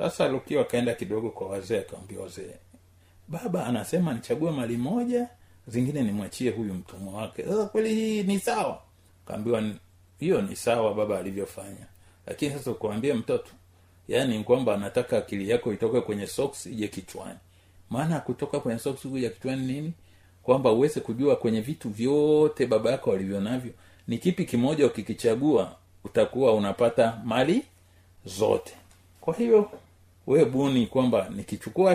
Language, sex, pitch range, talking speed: Swahili, male, 95-135 Hz, 140 wpm